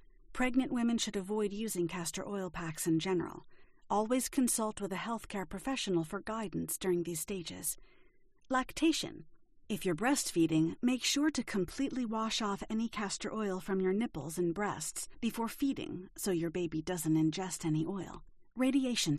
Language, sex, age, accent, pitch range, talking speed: English, female, 40-59, American, 175-240 Hz, 155 wpm